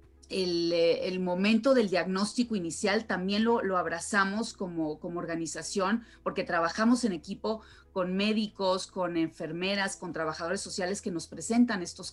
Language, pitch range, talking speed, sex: Spanish, 175-210 Hz, 140 wpm, female